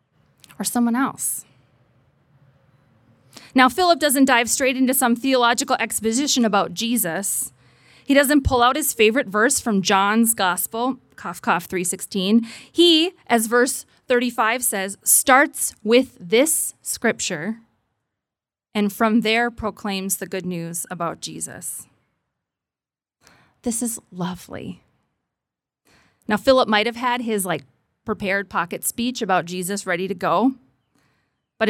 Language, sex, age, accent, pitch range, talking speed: English, female, 20-39, American, 180-240 Hz, 120 wpm